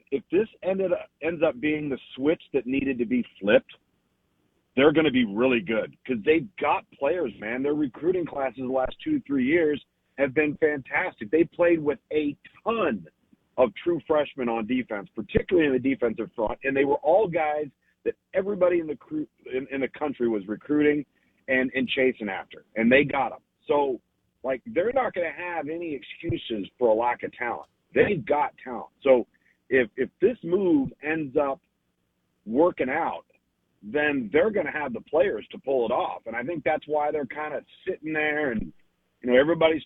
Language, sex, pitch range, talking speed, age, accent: English, male, 130-160 Hz, 190 wpm, 40-59, American